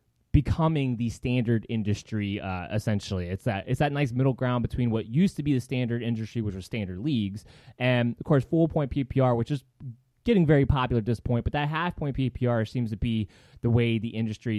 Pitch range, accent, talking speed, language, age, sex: 105-145 Hz, American, 210 wpm, English, 20-39, male